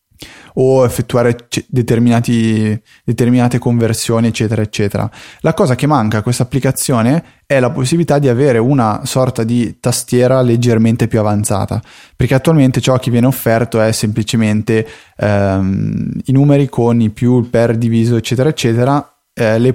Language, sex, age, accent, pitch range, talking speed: Italian, male, 20-39, native, 110-125 Hz, 135 wpm